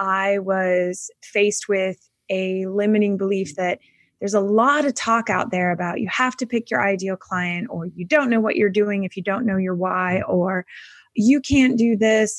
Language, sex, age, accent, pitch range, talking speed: English, female, 20-39, American, 190-225 Hz, 200 wpm